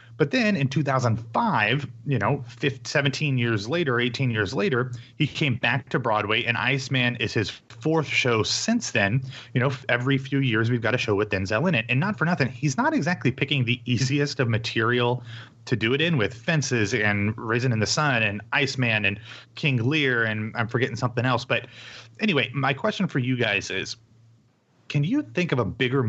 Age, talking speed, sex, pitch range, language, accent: 30-49, 195 wpm, male, 115-135 Hz, English, American